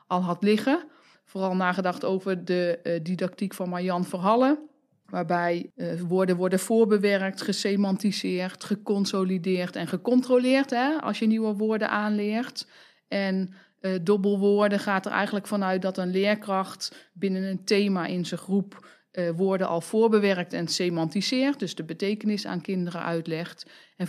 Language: Dutch